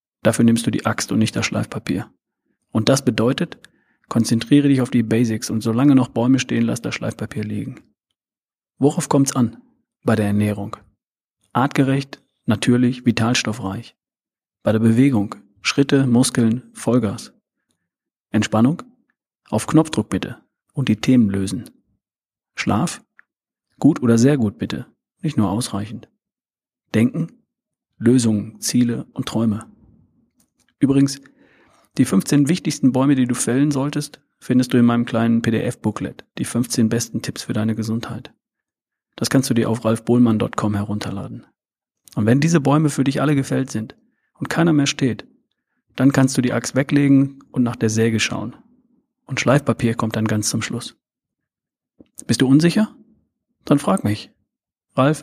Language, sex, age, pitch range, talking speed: German, male, 40-59, 110-135 Hz, 140 wpm